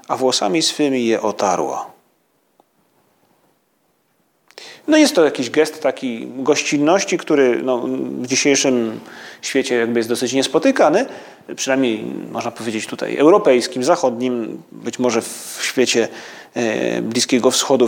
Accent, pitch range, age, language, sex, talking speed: native, 125-170 Hz, 30-49, Polish, male, 110 wpm